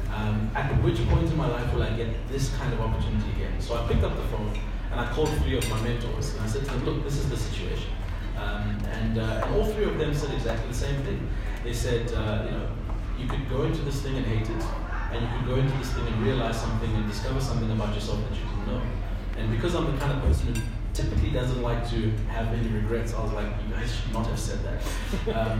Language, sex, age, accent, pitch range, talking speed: English, male, 30-49, South African, 105-125 Hz, 260 wpm